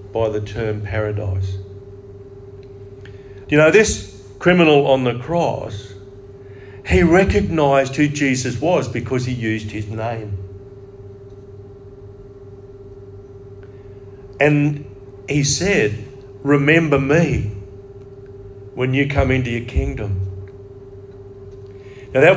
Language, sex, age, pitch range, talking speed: English, male, 50-69, 100-155 Hz, 90 wpm